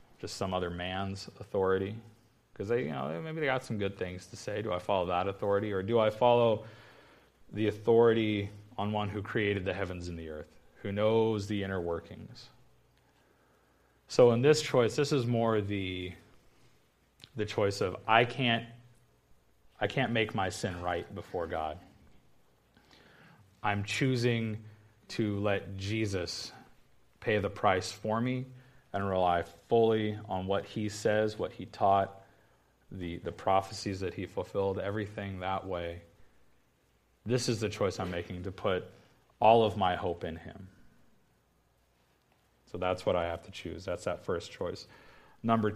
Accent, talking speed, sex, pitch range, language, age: American, 155 wpm, male, 90-115 Hz, English, 30-49